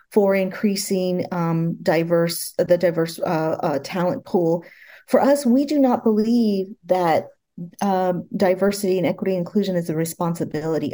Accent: American